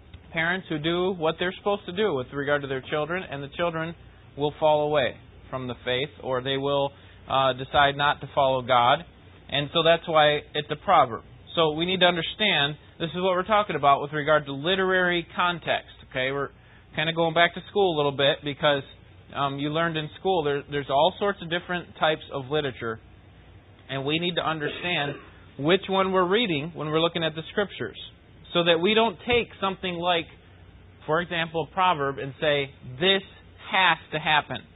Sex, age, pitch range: male, 30-49, 130-175 Hz